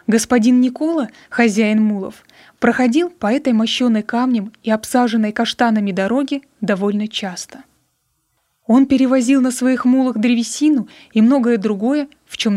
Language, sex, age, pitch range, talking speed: Russian, female, 20-39, 220-265 Hz, 125 wpm